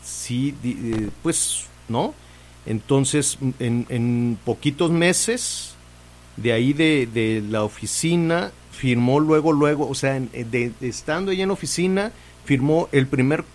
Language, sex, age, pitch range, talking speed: Spanish, male, 50-69, 110-145 Hz, 125 wpm